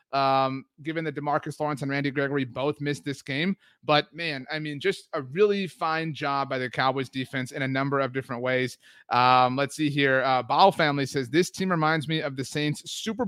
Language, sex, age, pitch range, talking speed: English, male, 30-49, 135-175 Hz, 210 wpm